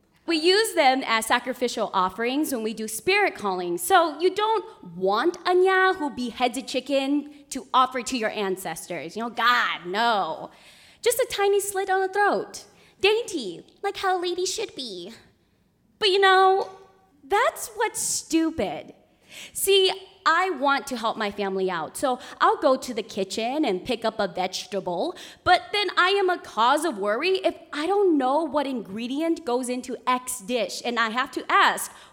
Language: English